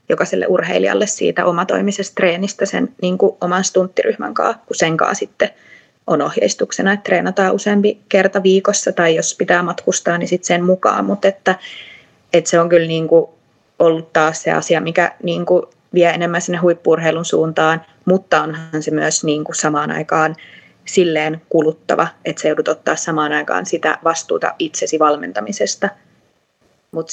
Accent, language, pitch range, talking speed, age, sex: native, Finnish, 155-185 Hz, 150 wpm, 20-39, female